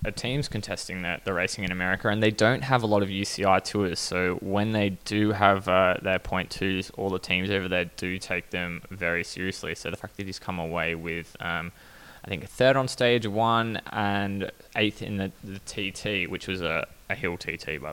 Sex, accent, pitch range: male, Australian, 90-105 Hz